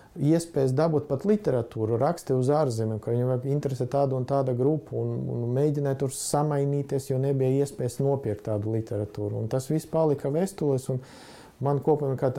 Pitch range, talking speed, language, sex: 115-140 Hz, 160 wpm, English, male